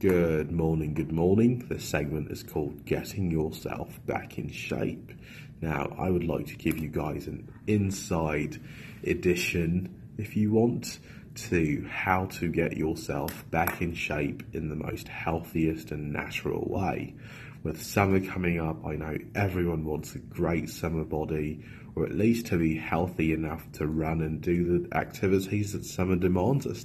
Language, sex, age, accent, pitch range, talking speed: English, male, 30-49, British, 80-90 Hz, 160 wpm